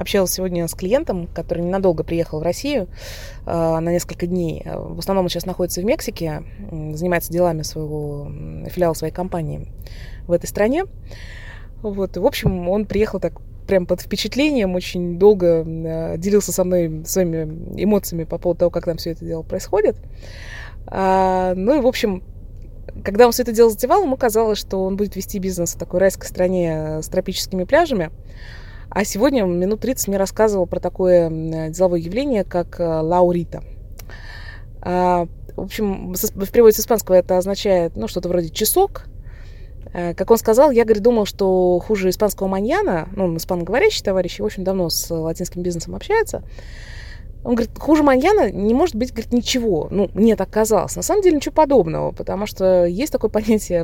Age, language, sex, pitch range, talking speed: 20-39, Russian, female, 165-215 Hz, 165 wpm